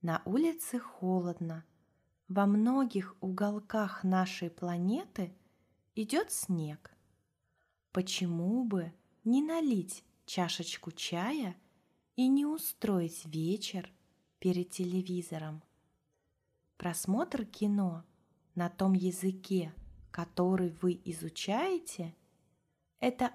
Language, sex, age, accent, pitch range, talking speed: Russian, female, 20-39, native, 170-200 Hz, 80 wpm